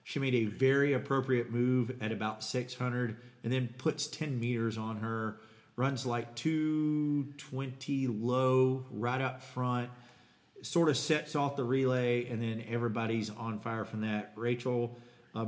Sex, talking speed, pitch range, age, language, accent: male, 145 wpm, 110-125 Hz, 40-59, English, American